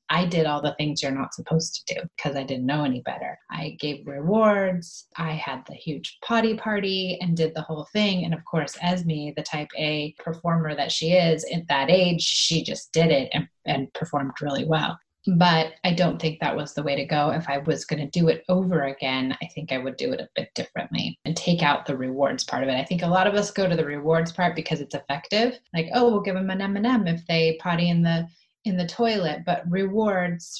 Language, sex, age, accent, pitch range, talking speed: English, female, 30-49, American, 160-190 Hz, 235 wpm